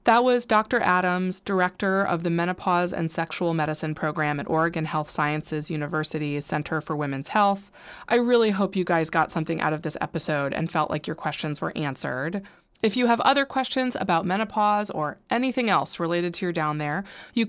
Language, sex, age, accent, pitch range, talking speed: English, female, 20-39, American, 165-210 Hz, 190 wpm